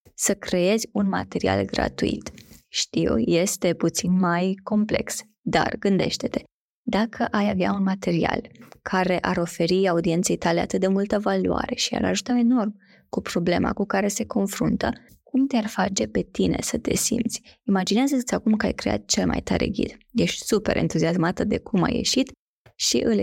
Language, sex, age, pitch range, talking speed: Romanian, female, 20-39, 185-230 Hz, 160 wpm